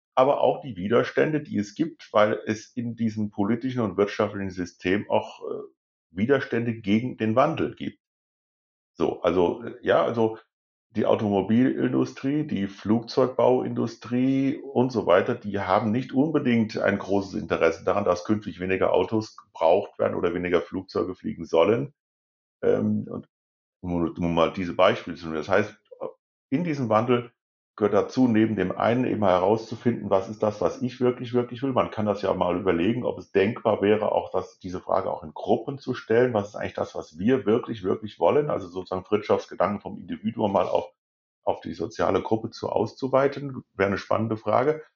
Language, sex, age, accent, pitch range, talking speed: German, male, 50-69, German, 100-125 Hz, 165 wpm